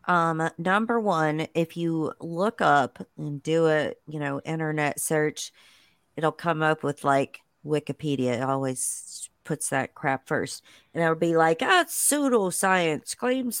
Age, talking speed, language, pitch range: 40-59, 140 wpm, English, 140-165 Hz